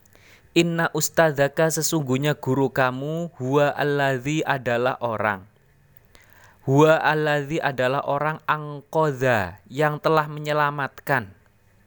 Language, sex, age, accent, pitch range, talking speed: Indonesian, male, 20-39, native, 115-150 Hz, 85 wpm